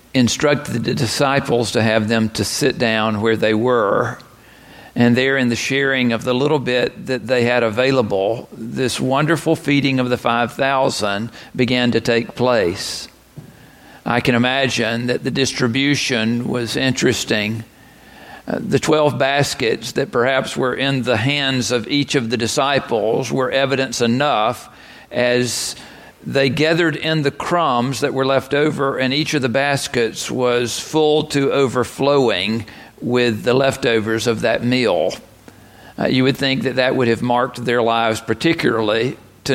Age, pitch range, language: 50-69, 120-140 Hz, English